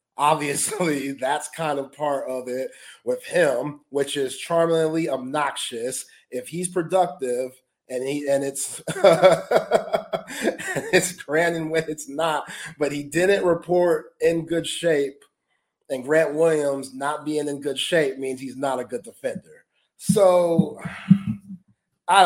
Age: 30-49